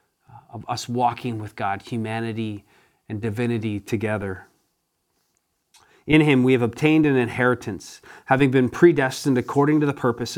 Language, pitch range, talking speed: English, 110-130 Hz, 135 wpm